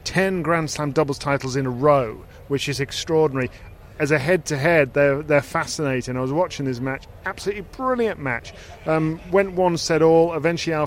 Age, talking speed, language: 40-59, 180 wpm, English